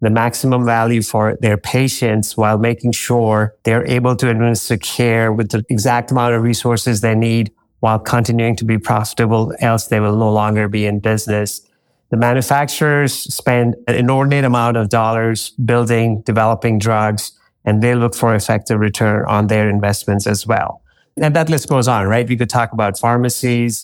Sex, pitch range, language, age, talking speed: male, 110-120 Hz, English, 30-49, 170 wpm